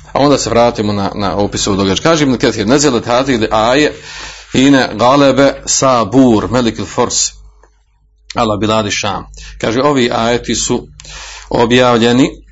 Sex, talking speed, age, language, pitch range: male, 145 wpm, 40-59, Croatian, 100-120 Hz